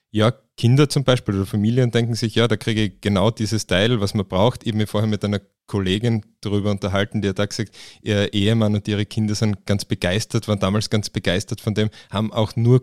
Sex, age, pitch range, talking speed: male, 20-39, 100-115 Hz, 225 wpm